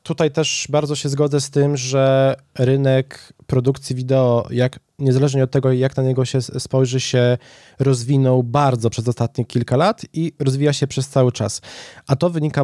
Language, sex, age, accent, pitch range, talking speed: Polish, male, 20-39, native, 125-145 Hz, 170 wpm